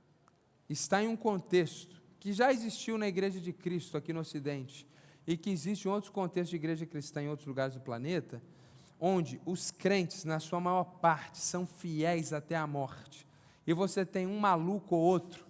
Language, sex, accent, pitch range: Portuguese, male, Brazilian, 155-195 Hz